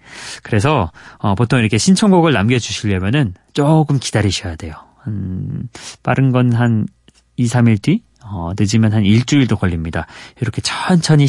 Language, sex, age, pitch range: Korean, male, 30-49, 100-145 Hz